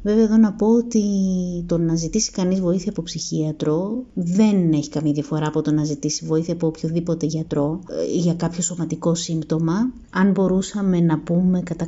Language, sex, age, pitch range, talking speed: Greek, female, 30-49, 160-185 Hz, 165 wpm